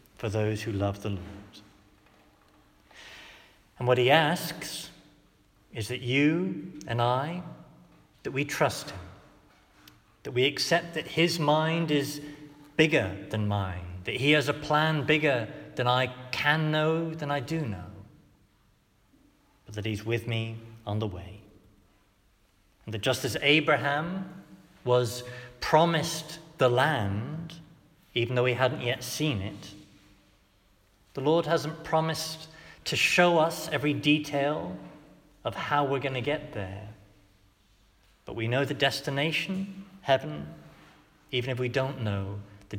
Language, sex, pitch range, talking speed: English, male, 100-150 Hz, 135 wpm